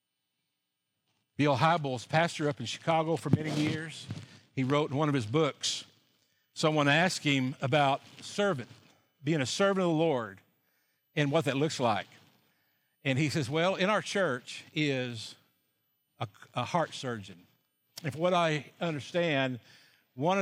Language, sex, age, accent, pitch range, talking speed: English, male, 50-69, American, 120-160 Hz, 145 wpm